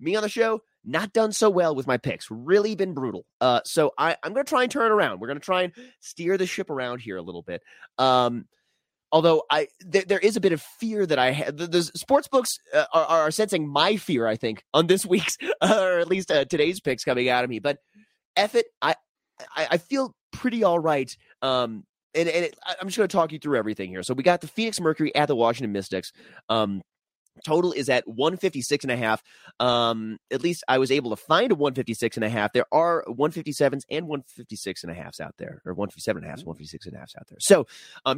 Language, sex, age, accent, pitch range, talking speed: English, male, 30-49, American, 125-185 Hz, 235 wpm